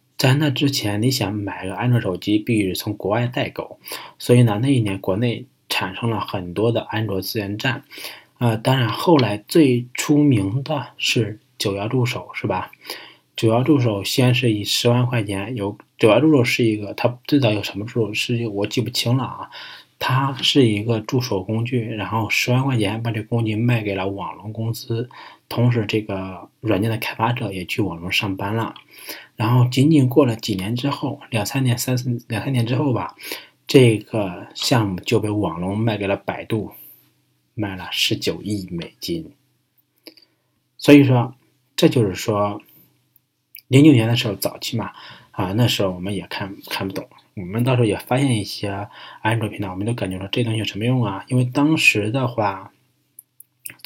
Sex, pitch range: male, 105-125 Hz